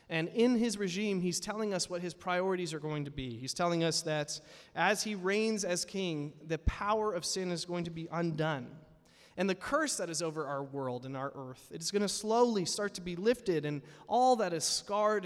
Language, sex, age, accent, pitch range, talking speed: English, male, 30-49, American, 145-180 Hz, 220 wpm